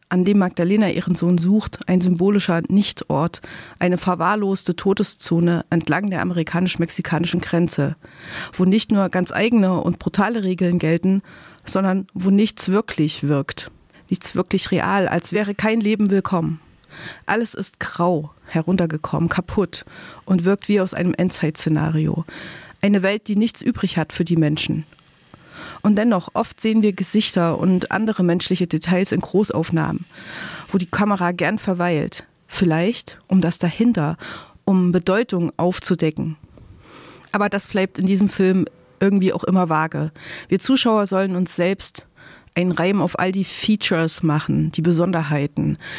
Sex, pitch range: female, 160-195 Hz